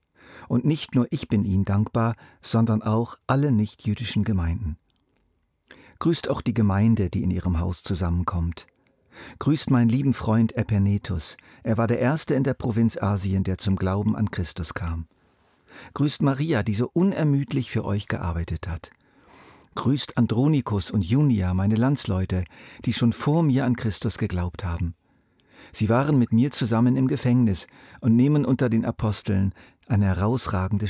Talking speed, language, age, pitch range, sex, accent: 150 wpm, German, 50-69, 95-125 Hz, male, German